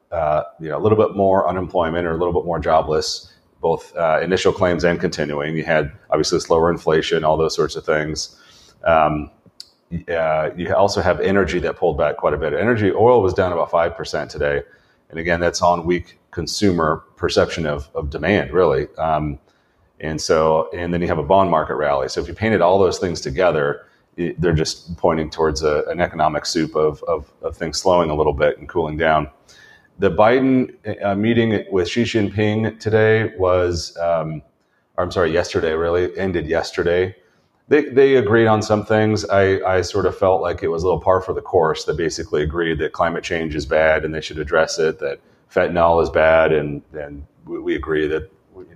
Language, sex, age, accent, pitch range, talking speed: English, male, 30-49, American, 80-100 Hz, 195 wpm